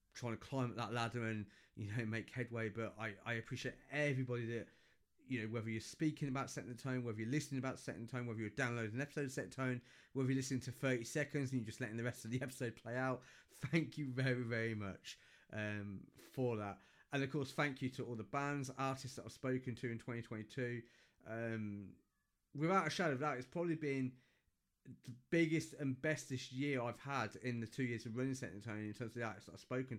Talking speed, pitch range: 225 wpm, 115-135 Hz